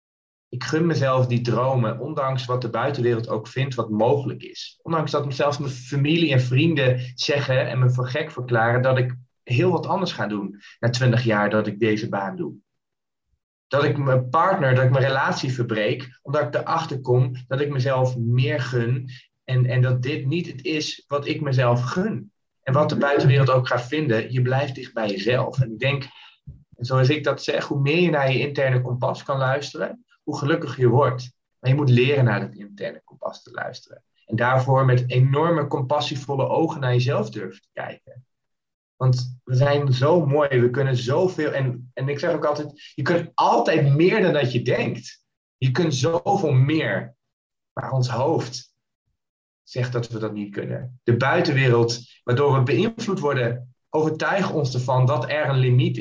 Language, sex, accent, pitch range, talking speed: Dutch, male, Dutch, 125-150 Hz, 185 wpm